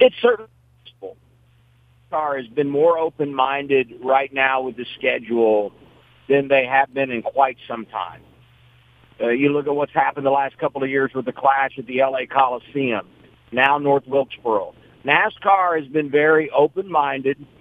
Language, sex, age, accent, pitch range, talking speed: English, male, 50-69, American, 135-165 Hz, 160 wpm